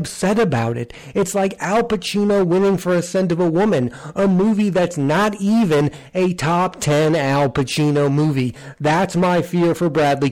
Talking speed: 175 wpm